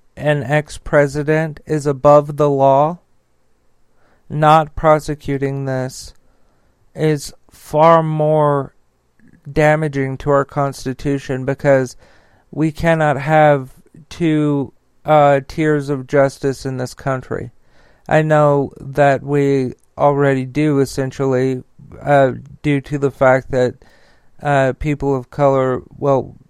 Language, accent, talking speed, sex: English, American, 105 wpm, male